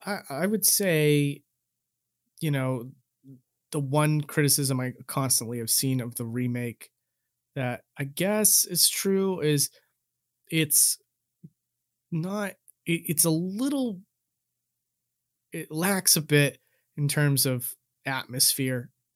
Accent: American